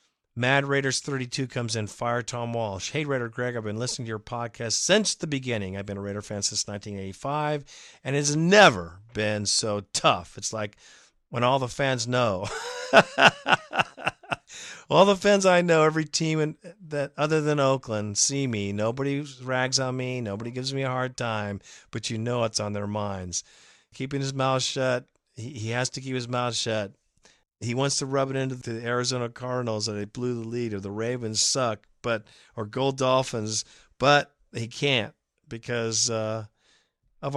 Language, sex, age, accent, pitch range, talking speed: English, male, 50-69, American, 110-135 Hz, 175 wpm